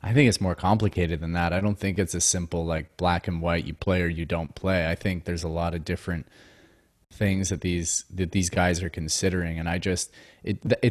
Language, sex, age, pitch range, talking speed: English, male, 20-39, 90-110 Hz, 230 wpm